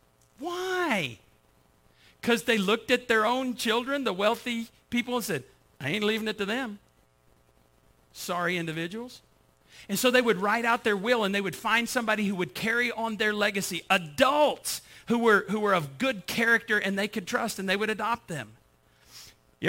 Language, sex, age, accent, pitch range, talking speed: English, male, 40-59, American, 155-235 Hz, 175 wpm